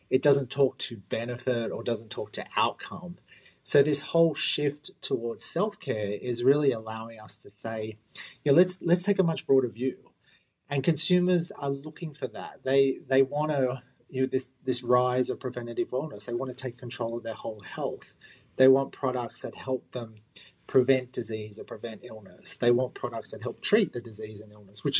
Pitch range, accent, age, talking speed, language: 115-140 Hz, Australian, 30-49, 190 wpm, English